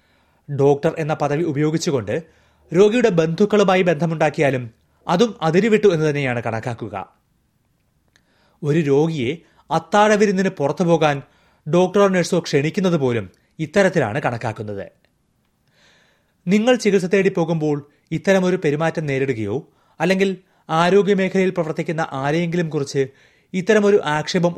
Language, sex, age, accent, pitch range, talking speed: Malayalam, male, 30-49, native, 135-185 Hz, 95 wpm